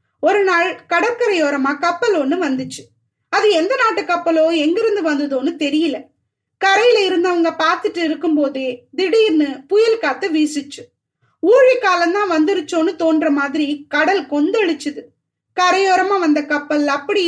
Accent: native